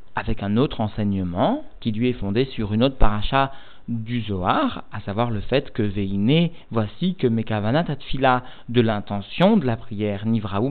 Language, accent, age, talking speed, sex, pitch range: French, French, 40-59, 170 wpm, male, 110-135 Hz